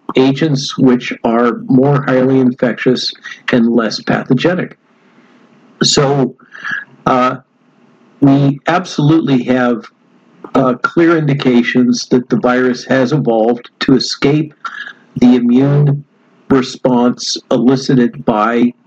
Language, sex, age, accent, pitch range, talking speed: English, male, 50-69, American, 125-150 Hz, 90 wpm